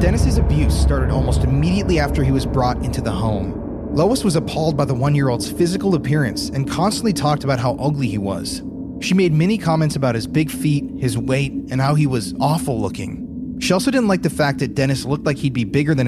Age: 30-49